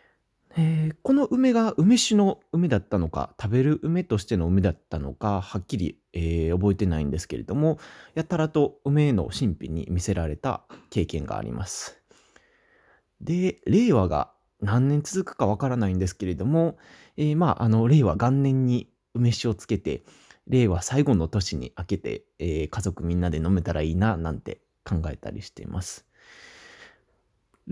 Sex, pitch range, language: male, 90-150 Hz, Japanese